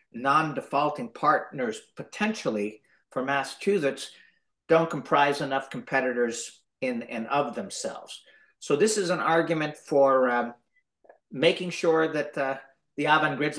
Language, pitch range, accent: English, 140-175 Hz, American